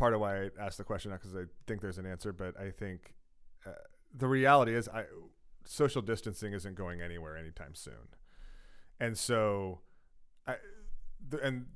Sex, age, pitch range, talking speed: male, 30-49, 90-115 Hz, 165 wpm